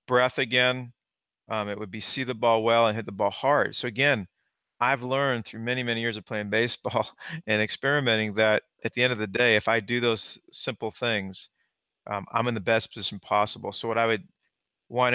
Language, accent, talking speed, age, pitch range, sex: English, American, 210 wpm, 40-59, 110-140 Hz, male